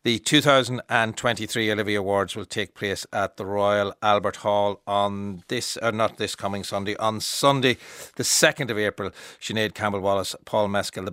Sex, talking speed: male, 160 wpm